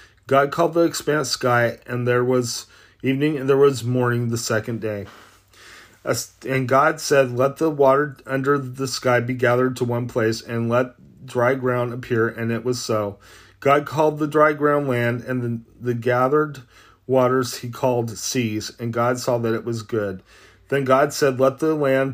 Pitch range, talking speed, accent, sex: 115-135 Hz, 180 wpm, American, male